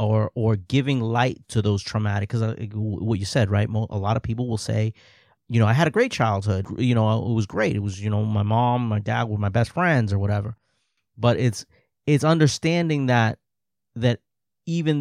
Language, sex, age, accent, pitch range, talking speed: English, male, 30-49, American, 110-140 Hz, 205 wpm